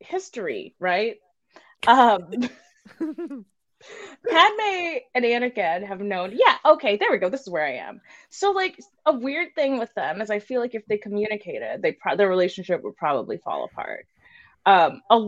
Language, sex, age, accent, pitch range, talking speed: English, female, 20-39, American, 170-240 Hz, 165 wpm